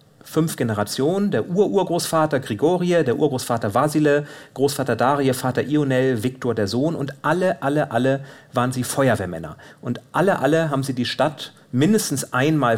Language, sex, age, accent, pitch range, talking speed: German, male, 40-59, German, 115-150 Hz, 145 wpm